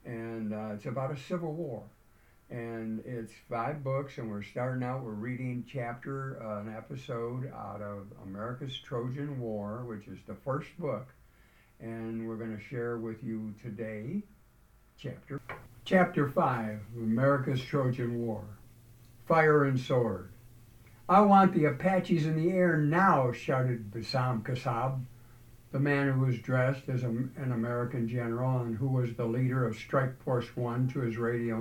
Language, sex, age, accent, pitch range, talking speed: English, male, 60-79, American, 115-140 Hz, 155 wpm